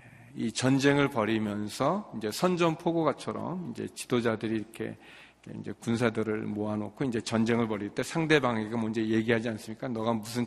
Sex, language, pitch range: male, Korean, 110-145 Hz